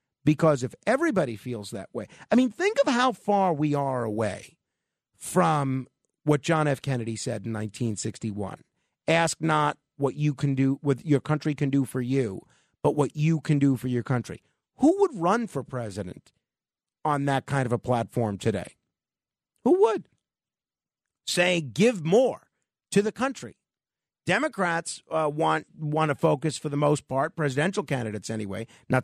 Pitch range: 130-180 Hz